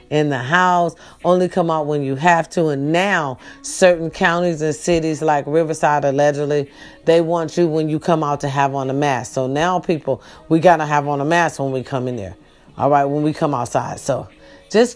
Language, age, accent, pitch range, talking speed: English, 40-59, American, 150-210 Hz, 215 wpm